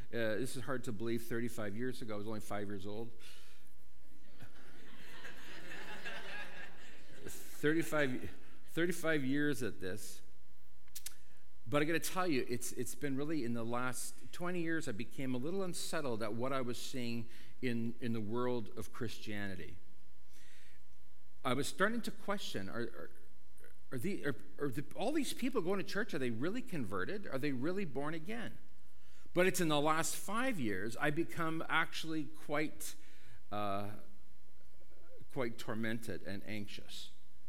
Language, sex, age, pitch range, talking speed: English, male, 50-69, 90-145 Hz, 150 wpm